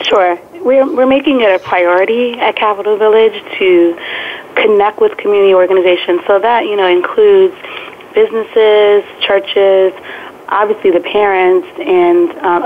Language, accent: English, American